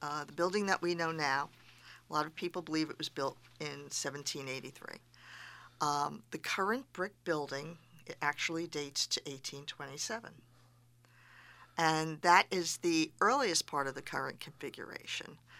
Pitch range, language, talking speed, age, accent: 145-170 Hz, English, 140 wpm, 50-69, American